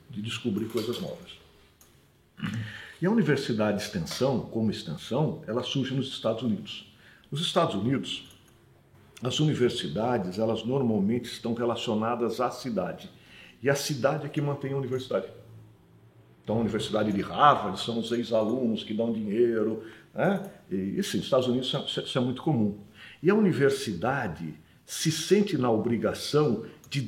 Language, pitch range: Portuguese, 110-140 Hz